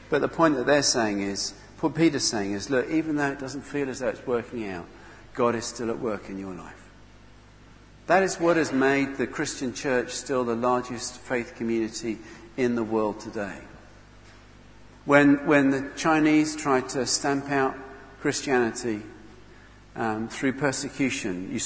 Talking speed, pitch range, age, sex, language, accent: 165 wpm, 110-135 Hz, 50-69, male, English, British